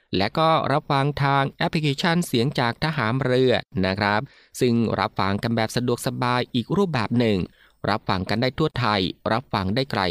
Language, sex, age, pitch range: Thai, male, 20-39, 105-140 Hz